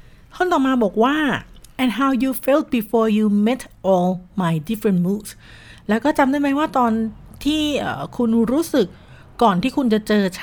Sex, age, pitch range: female, 60-79, 190-240 Hz